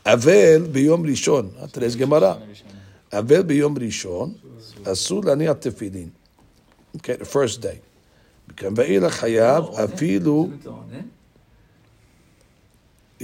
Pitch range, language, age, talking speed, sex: 110-140 Hz, English, 60-79, 65 wpm, male